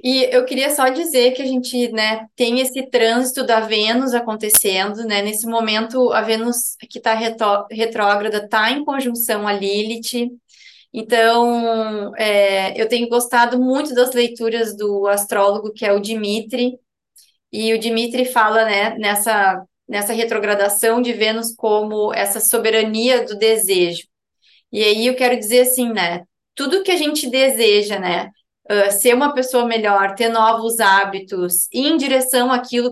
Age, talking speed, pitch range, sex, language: 20-39, 150 wpm, 215-250 Hz, female, Portuguese